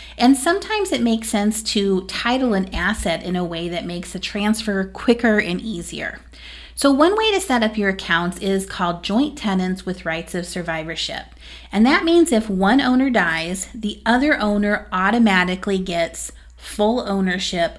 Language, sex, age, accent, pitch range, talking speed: English, female, 30-49, American, 175-225 Hz, 165 wpm